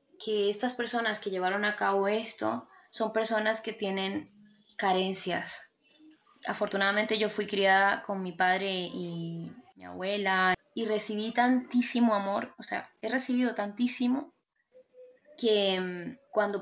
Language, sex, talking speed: Spanish, female, 125 wpm